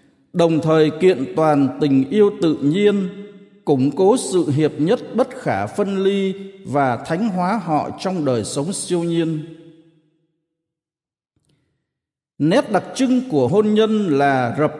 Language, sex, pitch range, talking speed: Vietnamese, male, 135-210 Hz, 140 wpm